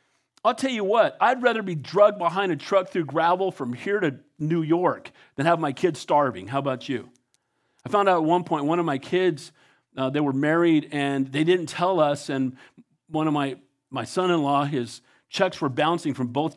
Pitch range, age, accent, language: 150-245 Hz, 50-69, American, English